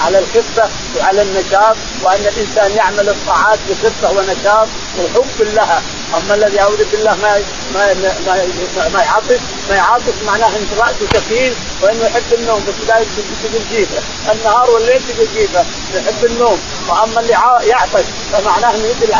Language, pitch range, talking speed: Arabic, 205-230 Hz, 155 wpm